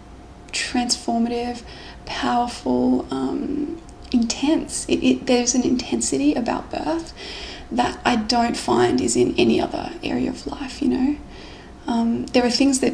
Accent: Australian